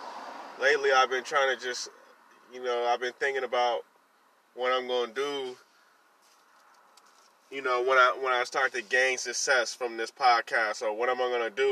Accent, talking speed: American, 180 wpm